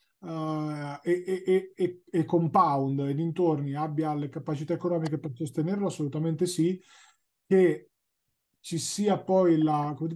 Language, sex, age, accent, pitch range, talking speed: Italian, male, 30-49, native, 140-170 Hz, 135 wpm